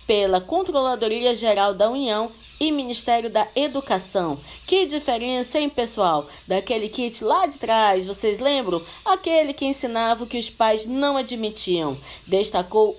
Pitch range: 200-280 Hz